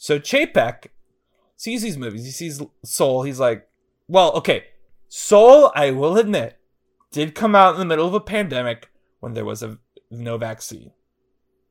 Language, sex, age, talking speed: English, male, 30-49, 160 wpm